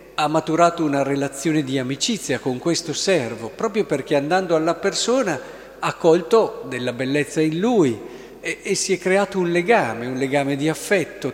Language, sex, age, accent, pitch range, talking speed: Italian, male, 50-69, native, 135-195 Hz, 165 wpm